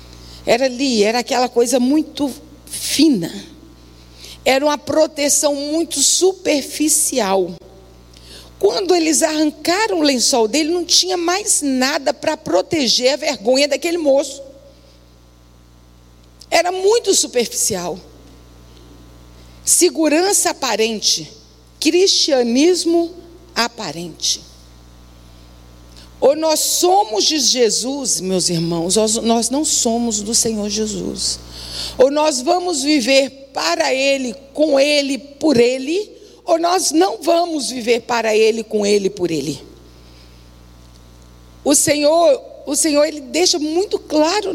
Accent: Brazilian